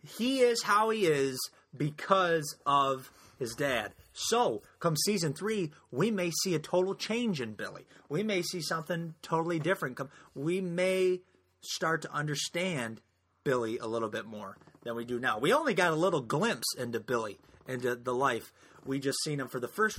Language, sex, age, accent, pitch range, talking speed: English, male, 30-49, American, 110-150 Hz, 175 wpm